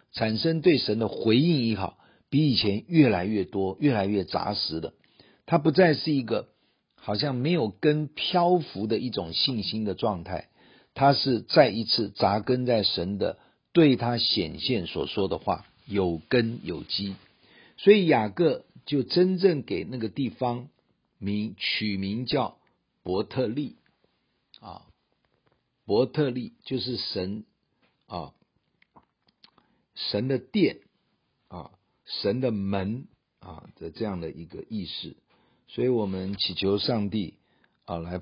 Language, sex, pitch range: Chinese, male, 95-130 Hz